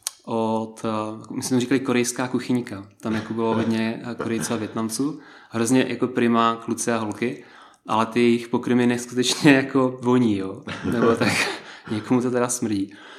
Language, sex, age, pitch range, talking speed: Czech, male, 20-39, 110-120 Hz, 145 wpm